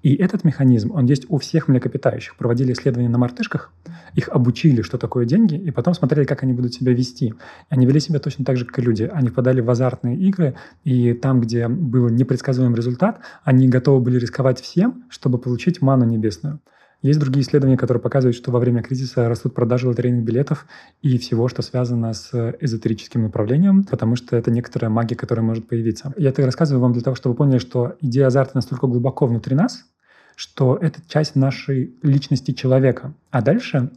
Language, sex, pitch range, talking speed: Russian, male, 120-145 Hz, 185 wpm